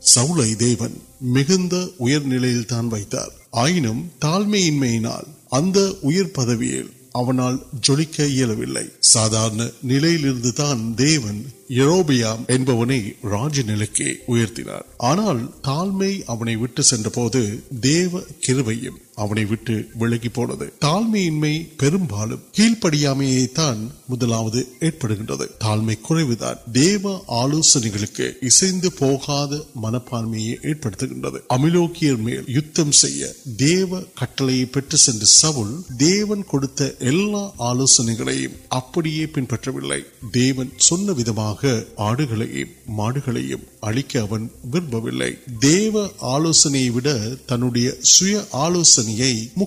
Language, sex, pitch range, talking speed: Urdu, male, 115-150 Hz, 30 wpm